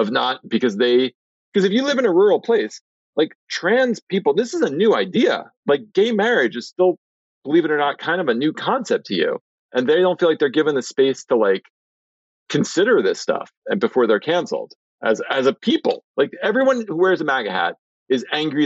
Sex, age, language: male, 40-59, English